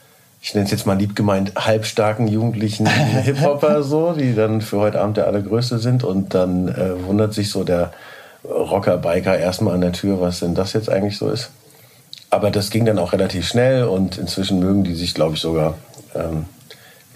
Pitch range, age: 90-110 Hz, 50-69